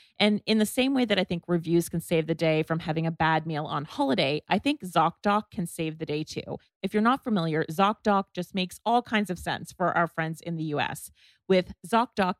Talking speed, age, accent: 230 wpm, 30-49, American